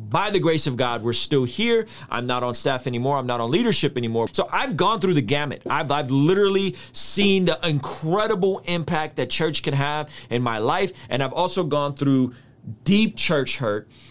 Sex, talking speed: male, 195 wpm